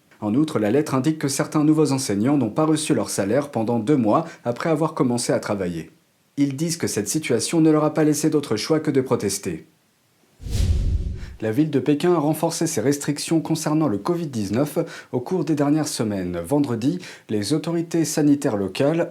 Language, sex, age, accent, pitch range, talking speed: French, male, 40-59, French, 115-160 Hz, 180 wpm